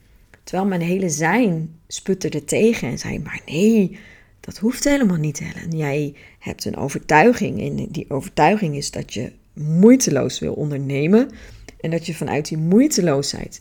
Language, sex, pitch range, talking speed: Dutch, female, 155-210 Hz, 155 wpm